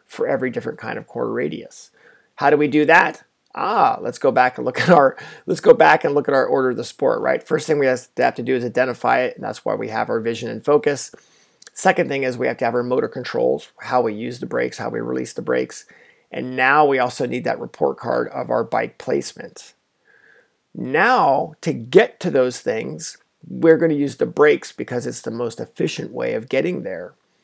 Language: English